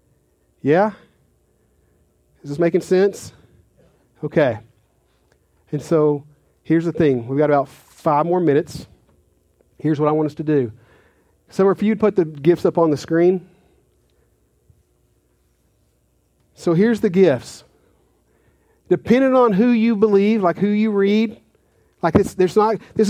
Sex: male